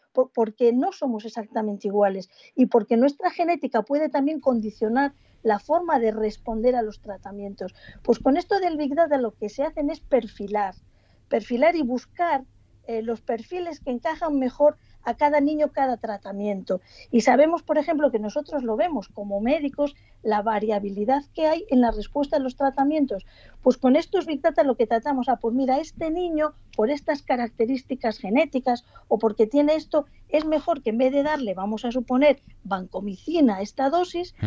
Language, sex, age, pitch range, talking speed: Spanish, female, 40-59, 220-290 Hz, 175 wpm